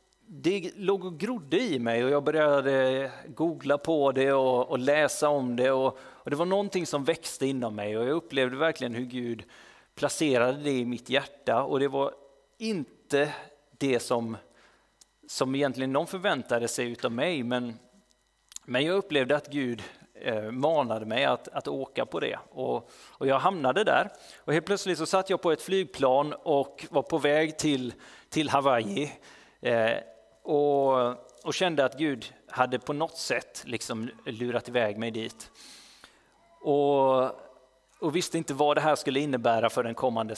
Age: 30-49